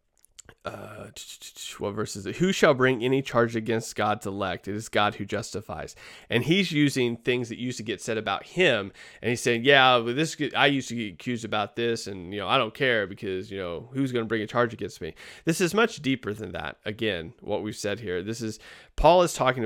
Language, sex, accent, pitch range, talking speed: English, male, American, 110-145 Hz, 230 wpm